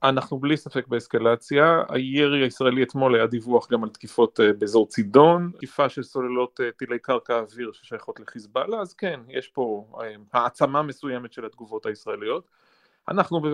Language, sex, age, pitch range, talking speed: Hebrew, male, 30-49, 120-145 Hz, 145 wpm